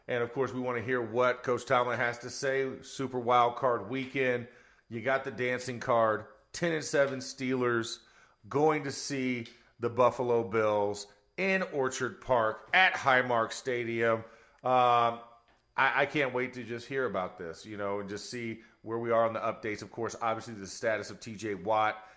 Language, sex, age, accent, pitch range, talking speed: English, male, 40-59, American, 115-135 Hz, 180 wpm